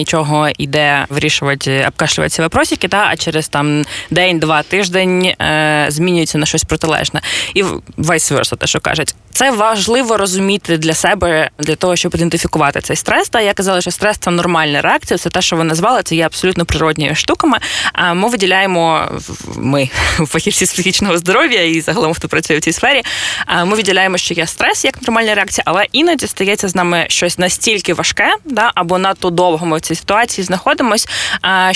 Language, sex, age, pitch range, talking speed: Ukrainian, female, 20-39, 160-195 Hz, 170 wpm